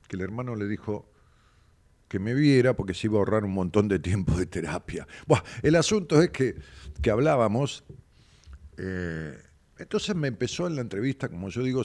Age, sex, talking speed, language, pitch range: 50-69, male, 180 wpm, Spanish, 85-125 Hz